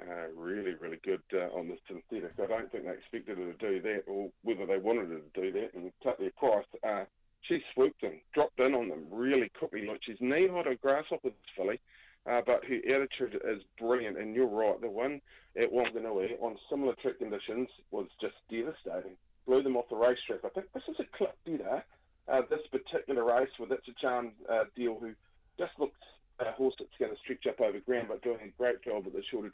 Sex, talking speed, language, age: male, 225 wpm, English, 30-49